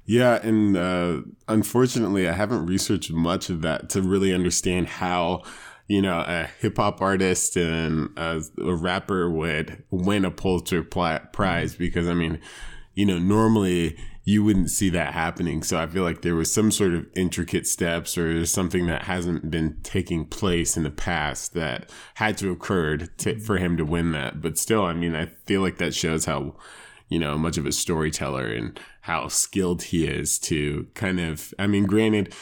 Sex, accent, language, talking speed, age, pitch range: male, American, English, 180 wpm, 20-39, 80-95 Hz